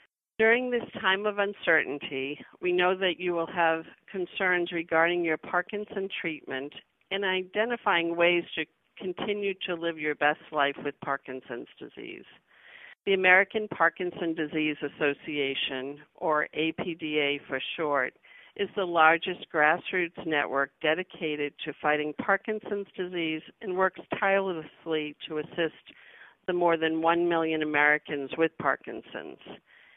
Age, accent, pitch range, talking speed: 50-69, American, 150-185 Hz, 120 wpm